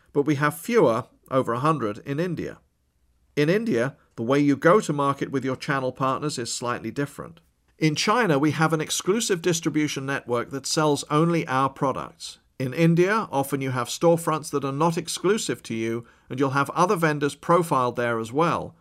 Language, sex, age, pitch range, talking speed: English, male, 40-59, 125-160 Hz, 180 wpm